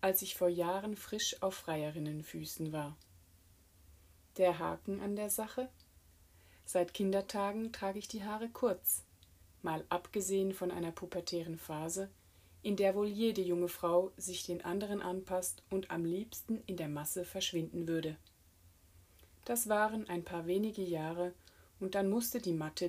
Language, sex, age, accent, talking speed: German, female, 30-49, German, 145 wpm